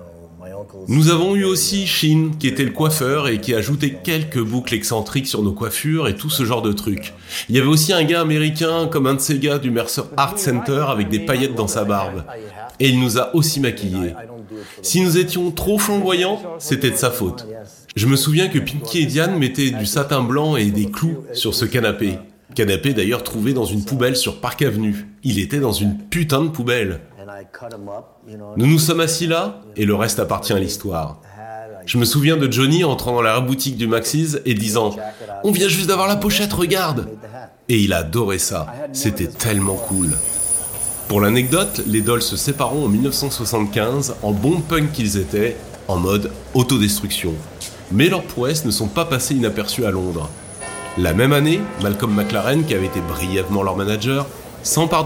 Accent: French